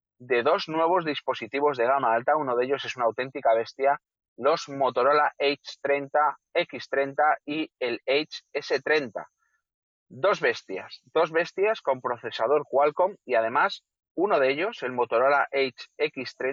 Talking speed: 130 wpm